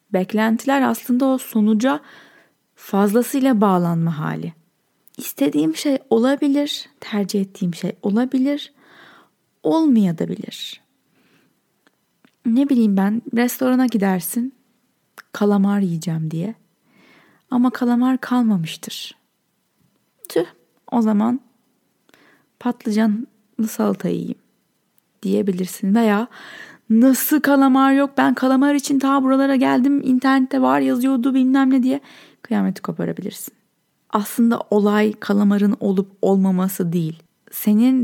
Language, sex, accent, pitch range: Turkish, female, native, 195-260 Hz